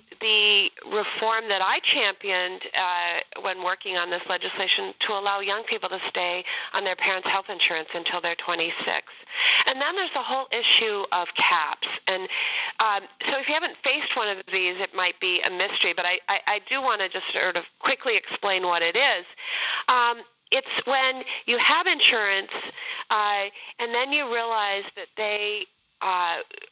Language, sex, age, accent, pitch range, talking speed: English, female, 40-59, American, 185-265 Hz, 175 wpm